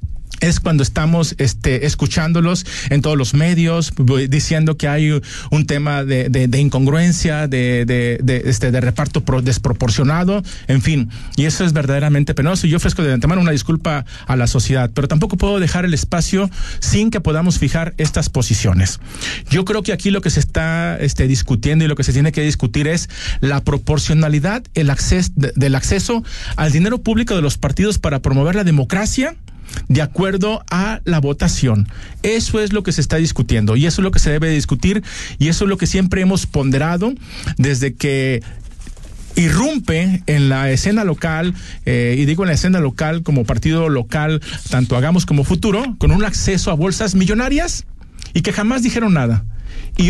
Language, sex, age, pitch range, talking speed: Spanish, male, 40-59, 130-175 Hz, 180 wpm